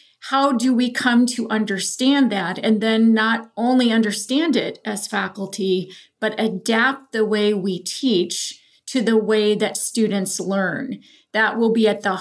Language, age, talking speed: English, 40-59, 155 wpm